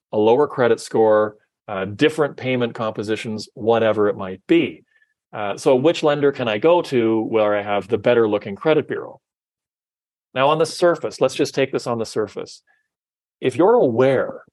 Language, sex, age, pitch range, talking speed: English, male, 40-59, 100-140 Hz, 175 wpm